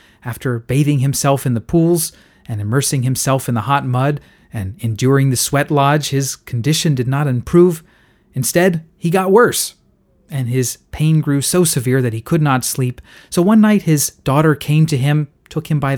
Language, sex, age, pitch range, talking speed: English, male, 30-49, 125-155 Hz, 185 wpm